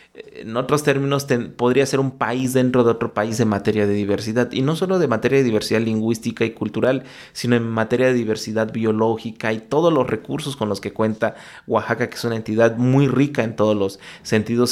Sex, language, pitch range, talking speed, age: male, Spanish, 110-130 Hz, 205 wpm, 30-49